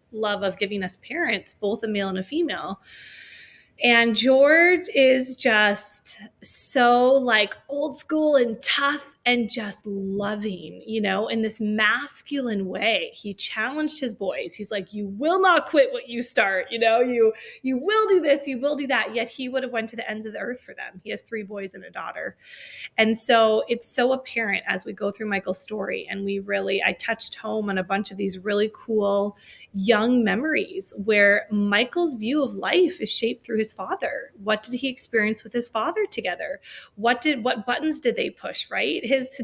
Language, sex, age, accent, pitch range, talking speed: English, female, 20-39, American, 205-260 Hz, 195 wpm